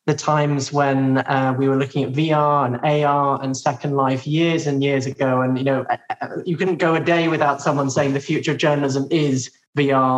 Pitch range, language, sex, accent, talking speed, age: 145-170 Hz, English, male, British, 205 wpm, 20-39